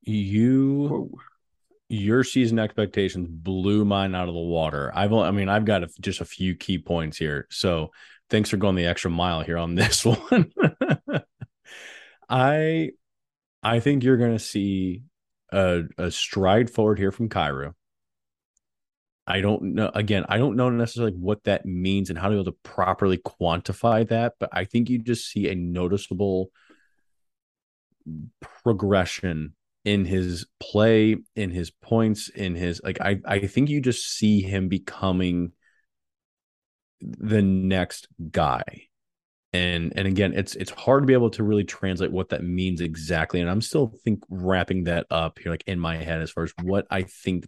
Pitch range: 90-110 Hz